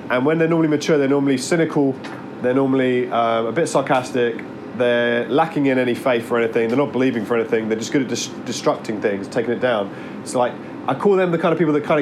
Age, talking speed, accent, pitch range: 30-49, 230 wpm, British, 140-180 Hz